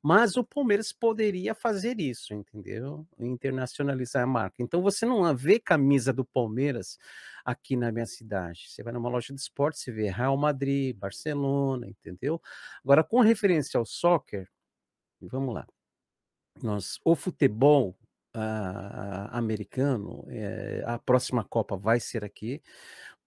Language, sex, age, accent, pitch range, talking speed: Portuguese, male, 50-69, Brazilian, 115-145 Hz, 135 wpm